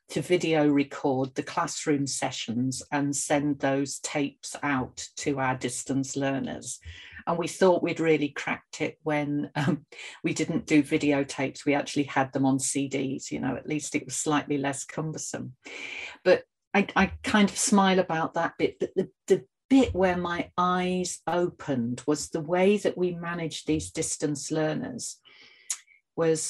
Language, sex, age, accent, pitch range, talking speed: English, female, 50-69, British, 145-185 Hz, 160 wpm